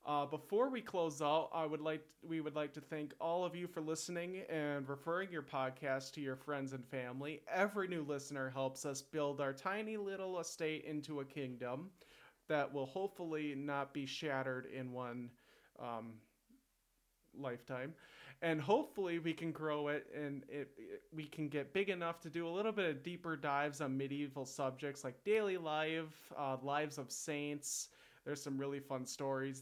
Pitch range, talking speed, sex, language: 135-165 Hz, 175 wpm, male, English